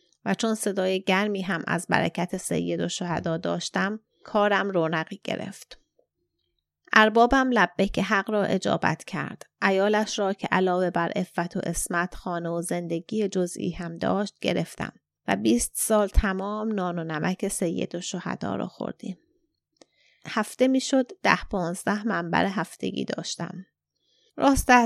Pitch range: 175-215 Hz